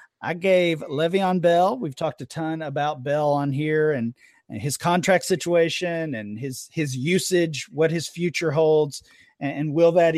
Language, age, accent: English, 40-59, American